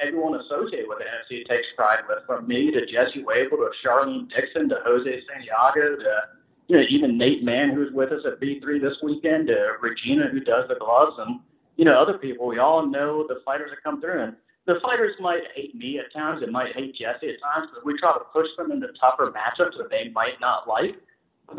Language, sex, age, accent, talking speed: English, male, 40-59, American, 225 wpm